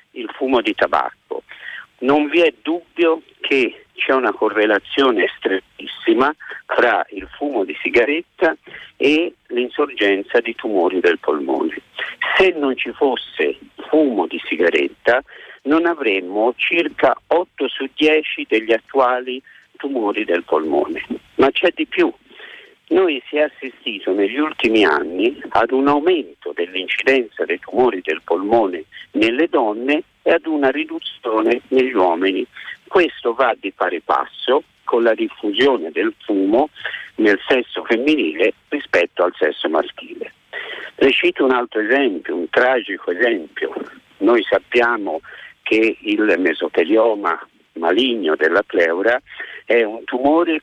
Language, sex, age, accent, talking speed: Italian, male, 50-69, native, 125 wpm